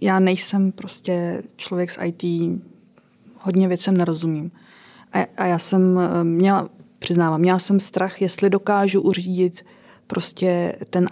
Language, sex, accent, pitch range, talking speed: Czech, female, native, 165-190 Hz, 120 wpm